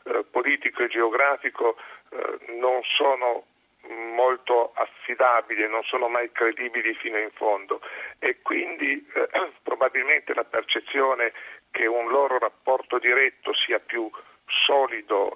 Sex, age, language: male, 50-69, Italian